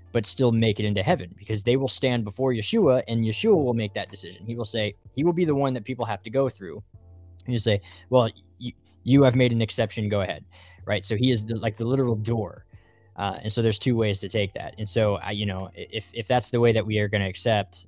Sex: male